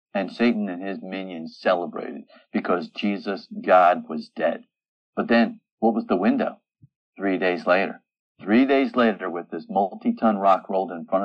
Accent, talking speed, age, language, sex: American, 160 wpm, 50-69, English, male